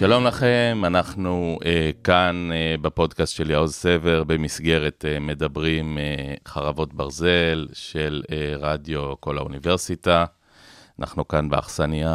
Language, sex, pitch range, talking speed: Hebrew, male, 75-90 Hz, 120 wpm